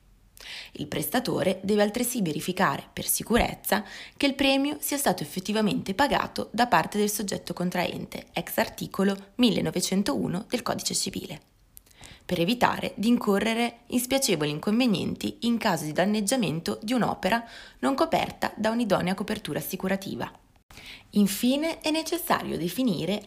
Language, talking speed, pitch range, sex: Italian, 125 wpm, 175-230 Hz, female